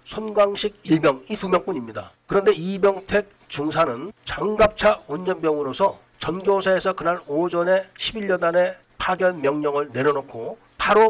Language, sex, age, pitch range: Korean, male, 40-59, 150-195 Hz